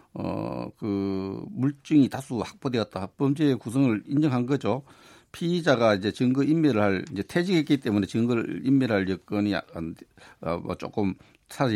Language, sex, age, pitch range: Korean, male, 50-69, 105-140 Hz